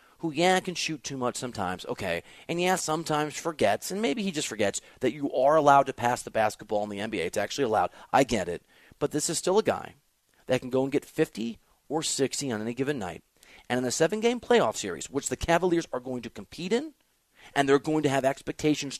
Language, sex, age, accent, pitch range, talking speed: English, male, 30-49, American, 120-170 Hz, 225 wpm